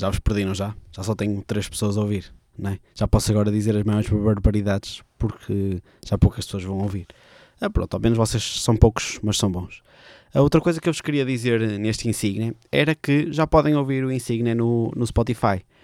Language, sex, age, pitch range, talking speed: Portuguese, male, 20-39, 105-130 Hz, 215 wpm